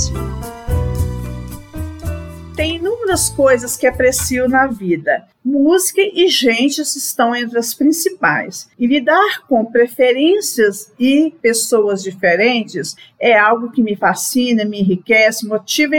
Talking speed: 110 wpm